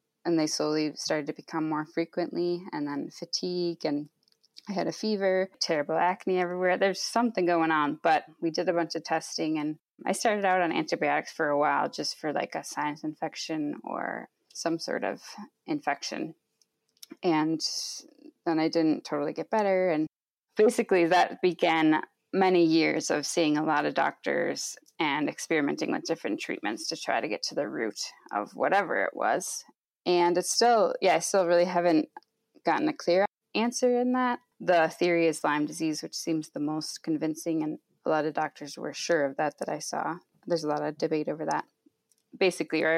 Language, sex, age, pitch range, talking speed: English, female, 20-39, 155-190 Hz, 180 wpm